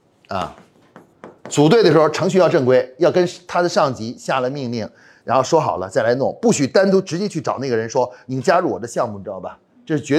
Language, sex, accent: Chinese, male, native